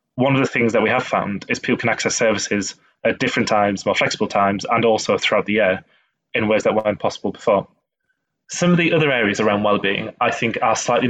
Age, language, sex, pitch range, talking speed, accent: 20-39, English, male, 110-130 Hz, 220 wpm, British